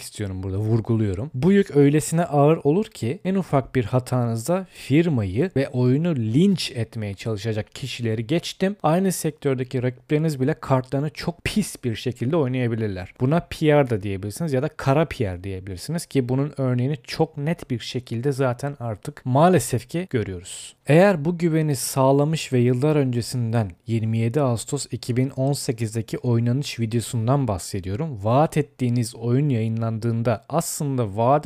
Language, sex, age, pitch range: Turkish, male, 40-59, 115-145 Hz